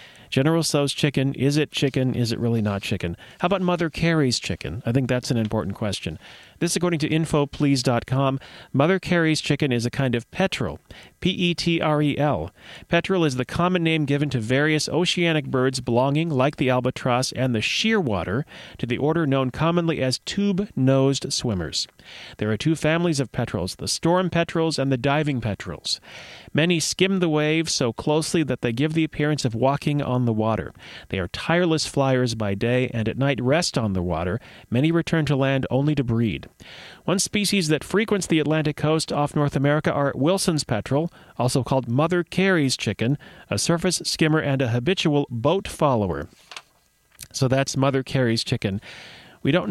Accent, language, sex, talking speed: American, English, male, 170 wpm